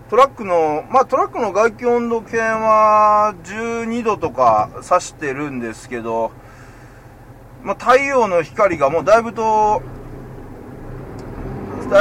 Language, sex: Japanese, male